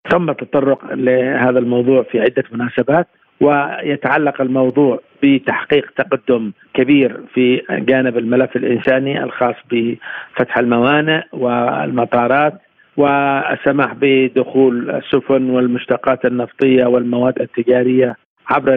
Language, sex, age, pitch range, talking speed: Arabic, male, 50-69, 130-145 Hz, 90 wpm